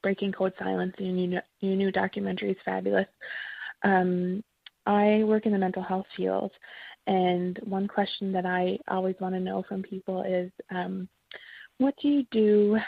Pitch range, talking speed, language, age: 170-195 Hz, 160 wpm, English, 20-39